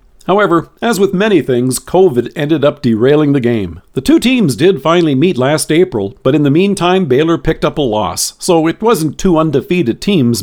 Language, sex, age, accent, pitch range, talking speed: English, male, 50-69, American, 130-175 Hz, 195 wpm